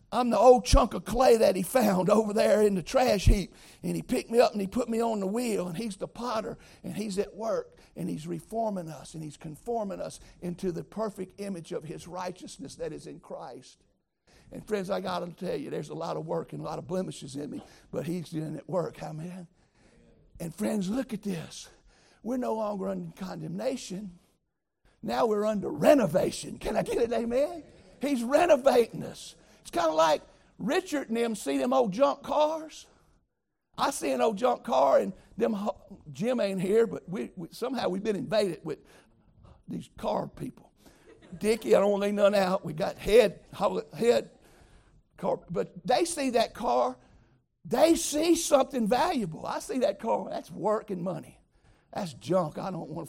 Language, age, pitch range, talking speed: English, 60-79, 180-250 Hz, 190 wpm